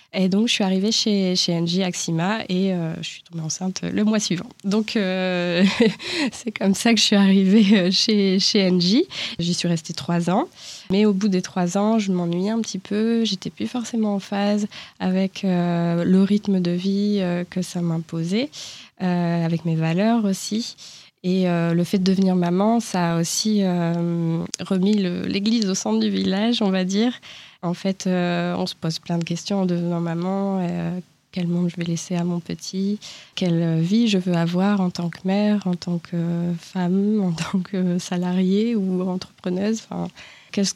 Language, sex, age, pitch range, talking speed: French, female, 20-39, 175-205 Hz, 190 wpm